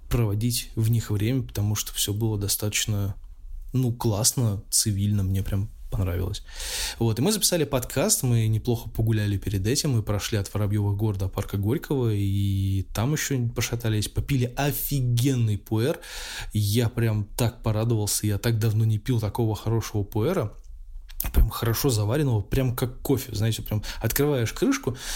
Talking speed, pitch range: 145 wpm, 105-120 Hz